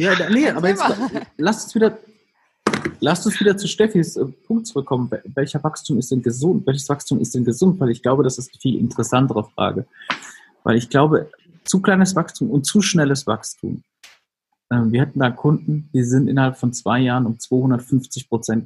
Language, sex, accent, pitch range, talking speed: German, male, German, 120-155 Hz, 185 wpm